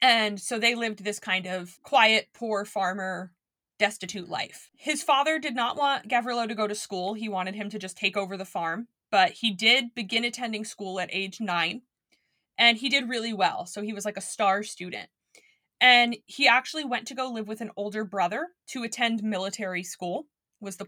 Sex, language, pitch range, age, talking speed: female, English, 195-250 Hz, 20-39, 200 wpm